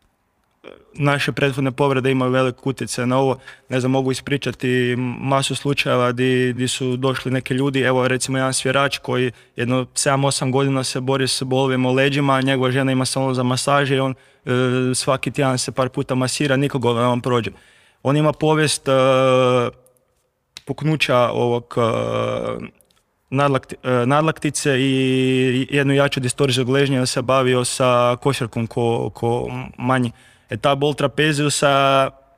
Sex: male